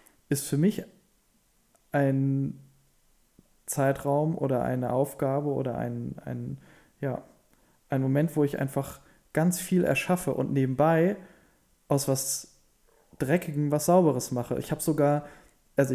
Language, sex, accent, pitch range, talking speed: German, male, German, 130-155 Hz, 120 wpm